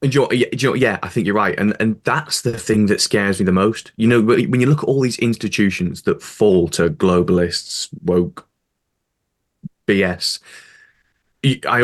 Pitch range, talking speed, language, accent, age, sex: 105-155 Hz, 200 wpm, English, British, 20-39, male